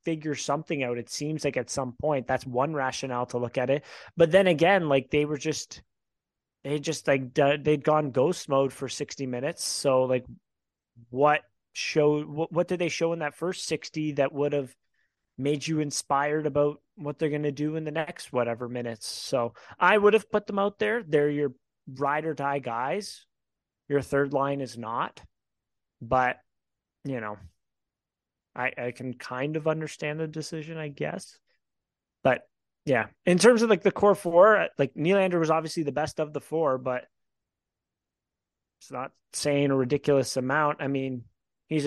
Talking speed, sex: 175 wpm, male